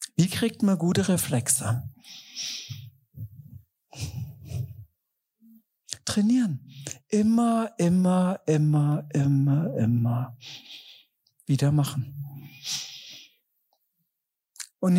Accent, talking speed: German, 55 wpm